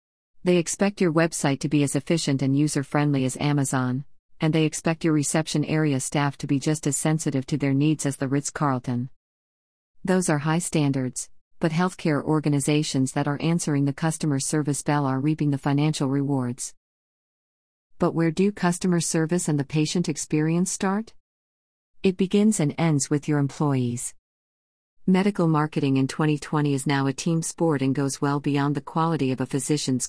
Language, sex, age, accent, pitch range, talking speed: English, female, 40-59, American, 135-160 Hz, 170 wpm